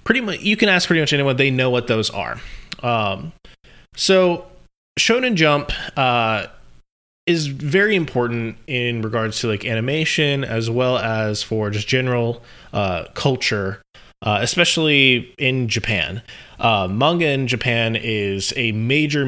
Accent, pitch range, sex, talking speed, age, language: American, 110-145 Hz, male, 140 wpm, 20-39, English